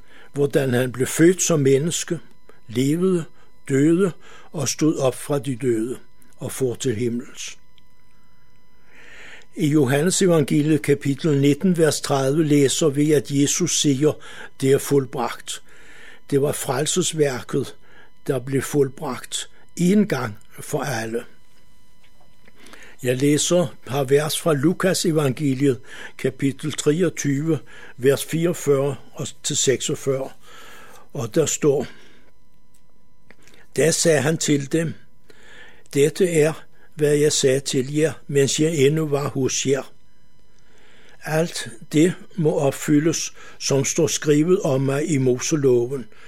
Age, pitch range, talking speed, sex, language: 60-79, 135-160 Hz, 110 wpm, male, Danish